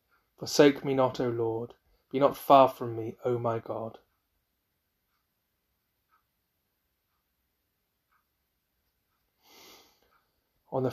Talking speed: 80 wpm